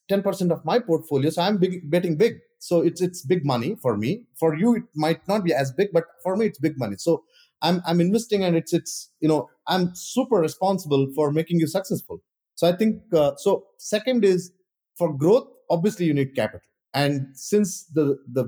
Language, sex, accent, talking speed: English, male, Indian, 205 wpm